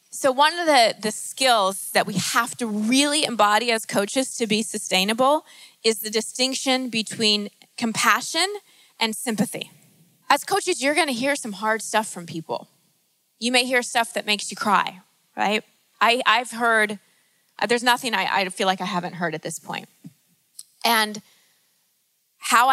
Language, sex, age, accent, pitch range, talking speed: English, female, 20-39, American, 195-240 Hz, 160 wpm